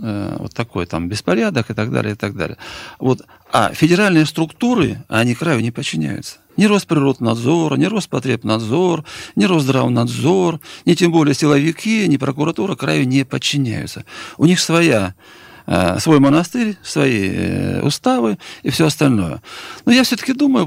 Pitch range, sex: 120-180 Hz, male